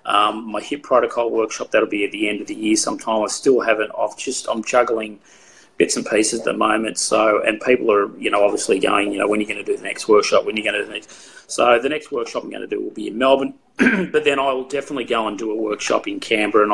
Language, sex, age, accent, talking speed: English, male, 30-49, Australian, 275 wpm